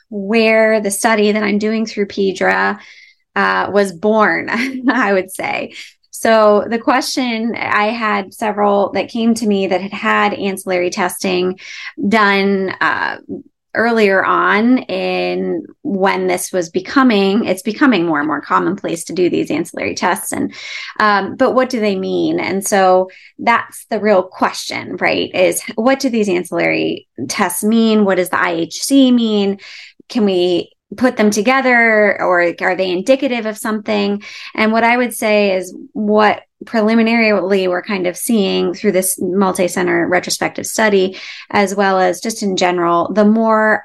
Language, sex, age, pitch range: English, female, 20-39, 185-225 Hz